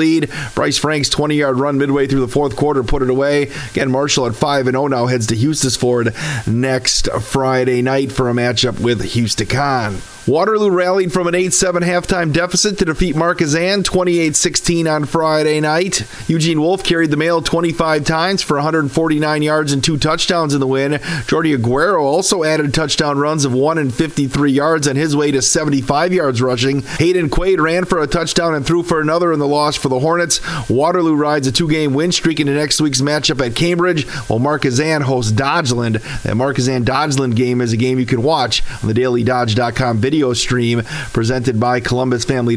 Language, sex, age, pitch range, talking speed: English, male, 40-59, 130-160 Hz, 185 wpm